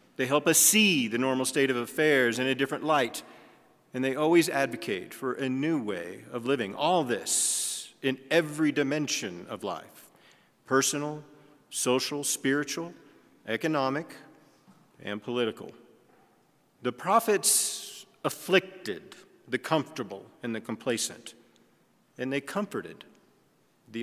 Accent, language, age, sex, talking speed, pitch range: American, English, 40-59, male, 120 wpm, 125-160 Hz